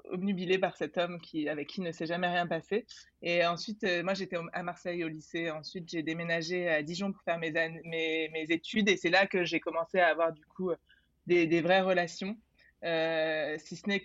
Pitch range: 165-195 Hz